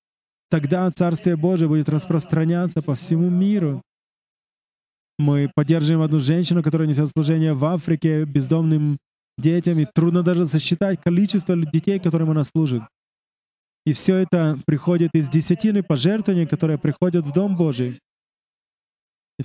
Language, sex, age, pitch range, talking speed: English, male, 20-39, 155-185 Hz, 125 wpm